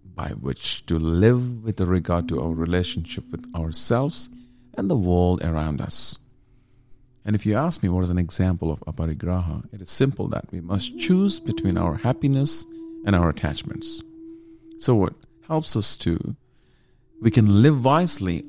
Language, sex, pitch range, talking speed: English, male, 90-125 Hz, 160 wpm